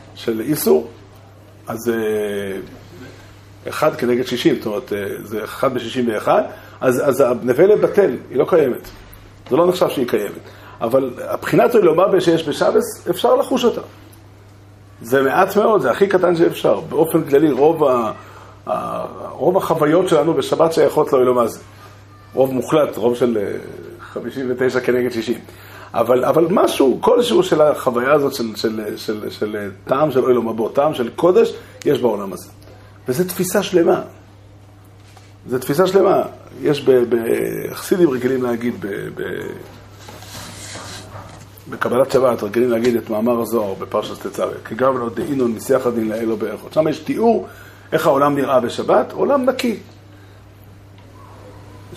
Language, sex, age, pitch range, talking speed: Hebrew, male, 50-69, 105-145 Hz, 140 wpm